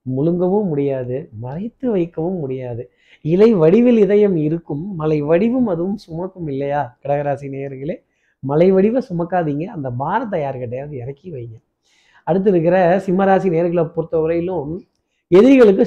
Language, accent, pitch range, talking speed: Tamil, native, 150-200 Hz, 115 wpm